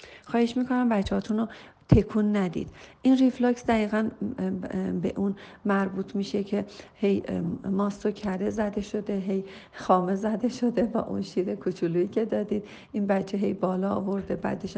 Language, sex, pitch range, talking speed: Persian, female, 190-225 Hz, 140 wpm